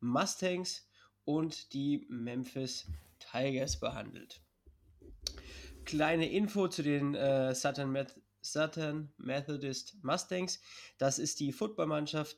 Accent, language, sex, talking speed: German, German, male, 85 wpm